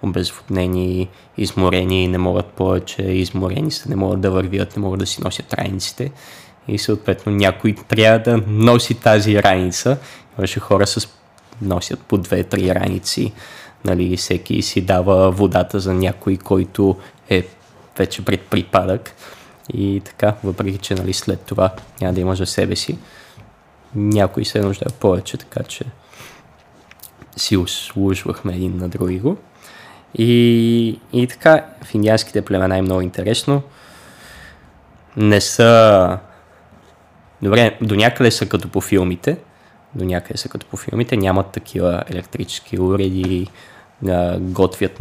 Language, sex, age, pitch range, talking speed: Bulgarian, male, 20-39, 95-110 Hz, 130 wpm